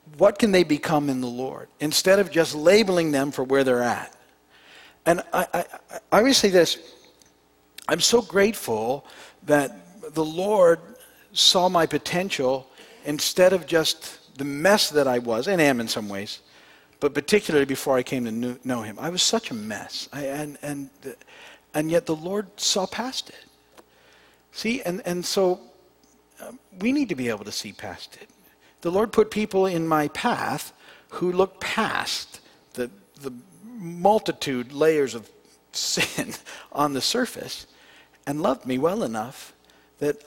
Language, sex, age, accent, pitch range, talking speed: English, male, 50-69, American, 125-180 Hz, 160 wpm